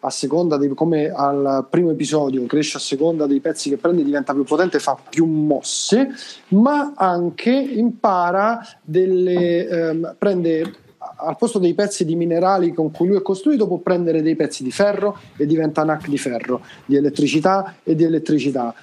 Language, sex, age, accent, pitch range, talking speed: Italian, male, 30-49, native, 155-205 Hz, 175 wpm